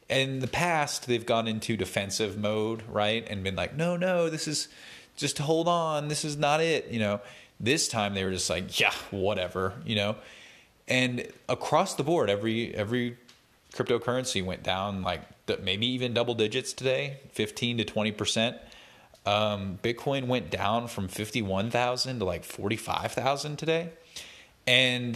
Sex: male